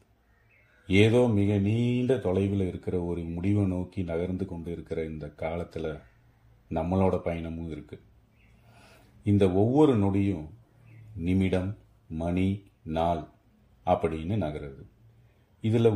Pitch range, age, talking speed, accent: 85-105 Hz, 40-59, 95 wpm, native